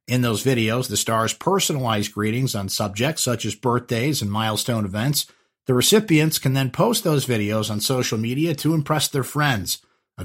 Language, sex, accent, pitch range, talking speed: English, male, American, 110-150 Hz, 175 wpm